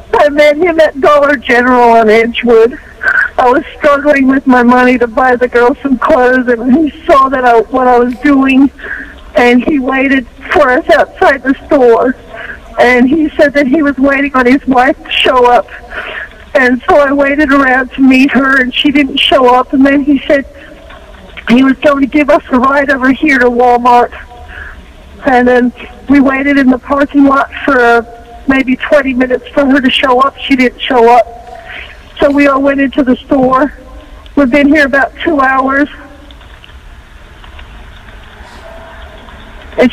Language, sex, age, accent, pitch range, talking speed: English, female, 50-69, American, 245-290 Hz, 175 wpm